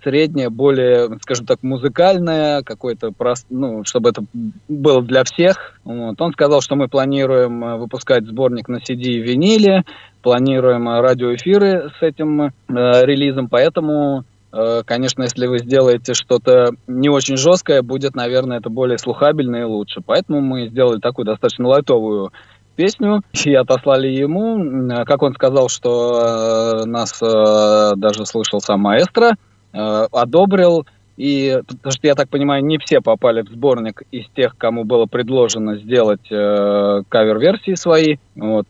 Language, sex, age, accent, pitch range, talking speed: Russian, male, 20-39, native, 115-140 Hz, 135 wpm